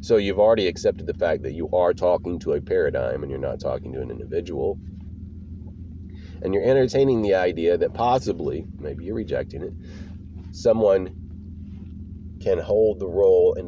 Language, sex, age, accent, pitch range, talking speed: English, male, 30-49, American, 85-100 Hz, 160 wpm